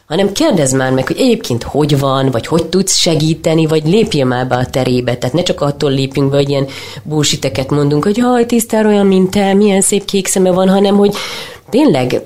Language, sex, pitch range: Hungarian, female, 135-185 Hz